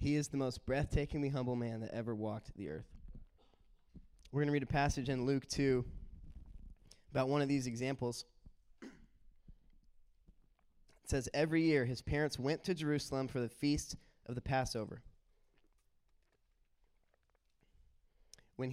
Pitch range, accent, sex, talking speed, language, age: 120-145 Hz, American, male, 135 wpm, English, 20-39